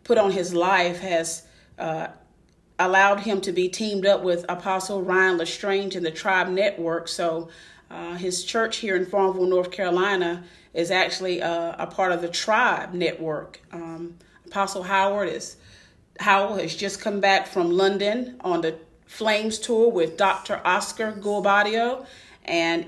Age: 40-59